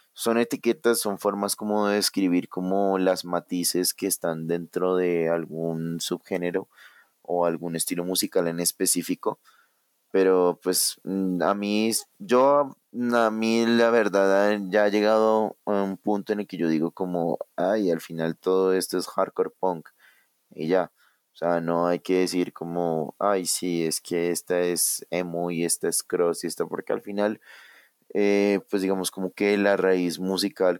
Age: 30-49